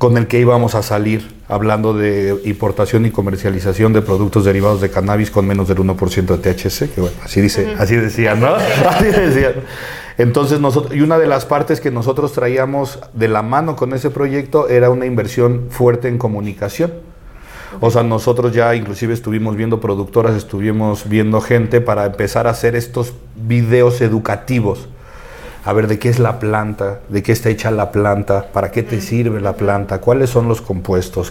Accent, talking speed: Mexican, 175 wpm